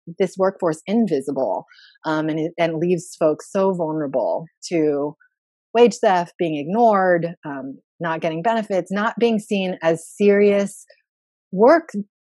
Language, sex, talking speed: English, female, 125 wpm